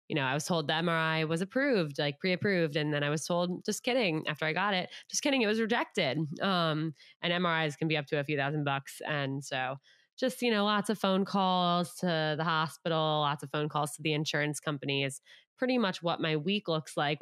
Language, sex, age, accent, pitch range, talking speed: English, female, 20-39, American, 145-175 Hz, 230 wpm